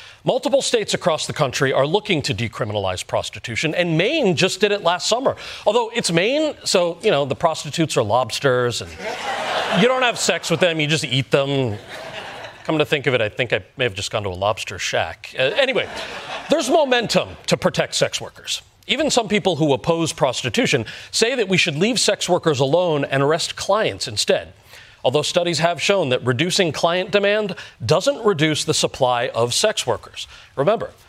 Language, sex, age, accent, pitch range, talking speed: English, male, 40-59, American, 140-210 Hz, 185 wpm